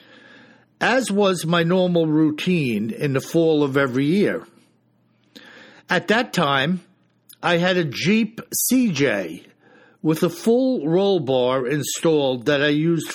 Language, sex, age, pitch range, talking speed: English, male, 60-79, 150-205 Hz, 130 wpm